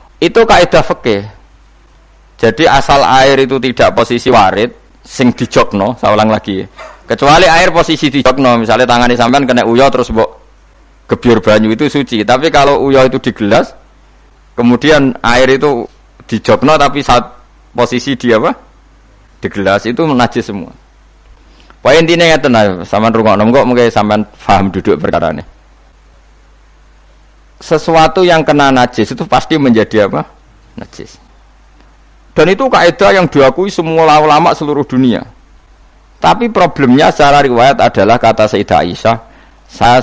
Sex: male